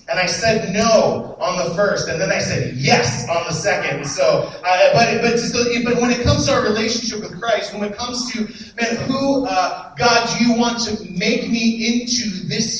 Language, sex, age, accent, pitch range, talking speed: English, male, 30-49, American, 195-230 Hz, 210 wpm